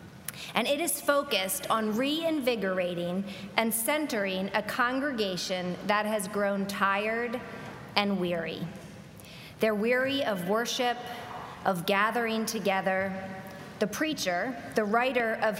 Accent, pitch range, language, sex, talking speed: American, 190-245 Hz, English, female, 110 wpm